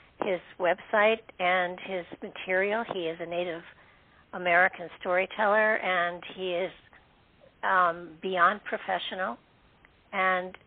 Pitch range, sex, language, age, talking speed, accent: 175-215 Hz, female, English, 60-79, 100 wpm, American